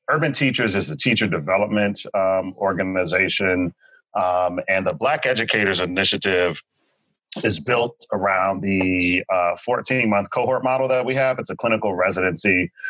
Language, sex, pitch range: English, male, 95-120 Hz